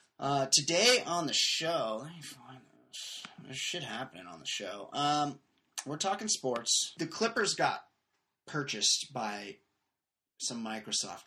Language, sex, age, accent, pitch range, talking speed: English, male, 30-49, American, 110-145 Hz, 140 wpm